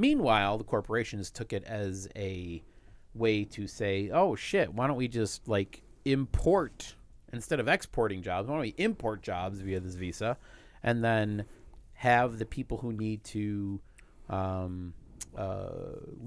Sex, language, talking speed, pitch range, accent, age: male, English, 150 wpm, 95-120 Hz, American, 30-49